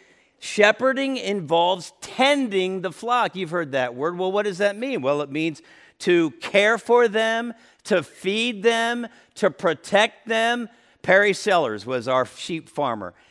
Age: 50-69